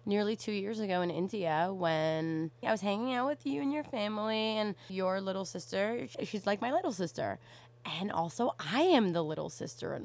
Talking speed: 195 wpm